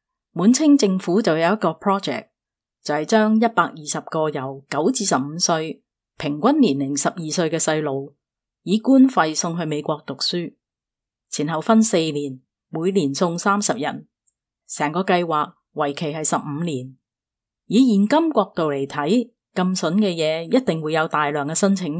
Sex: female